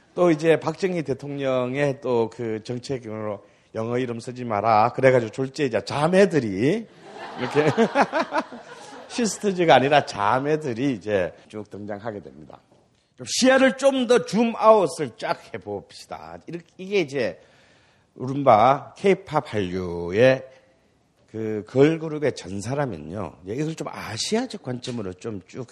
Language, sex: Korean, male